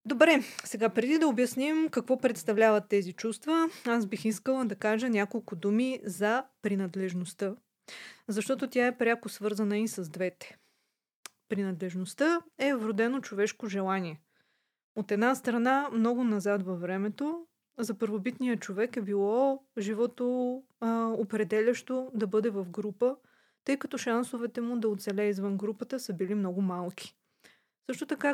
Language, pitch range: Bulgarian, 205-250 Hz